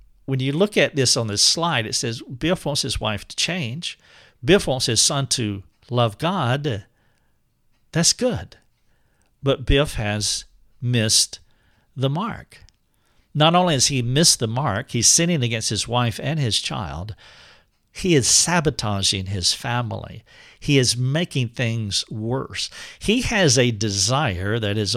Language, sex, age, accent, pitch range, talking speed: English, male, 60-79, American, 115-150 Hz, 150 wpm